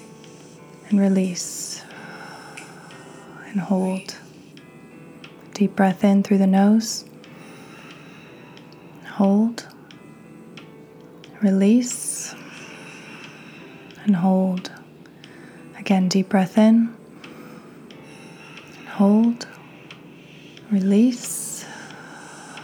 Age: 20-39